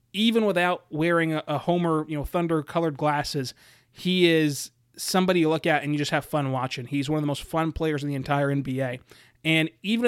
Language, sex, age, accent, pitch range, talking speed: English, male, 30-49, American, 145-180 Hz, 200 wpm